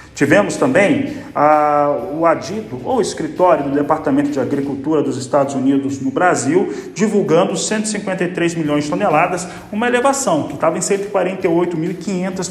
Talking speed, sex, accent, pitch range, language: 130 wpm, male, Brazilian, 150-185 Hz, Portuguese